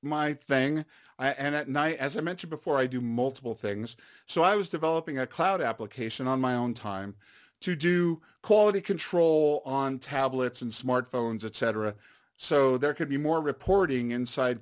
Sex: male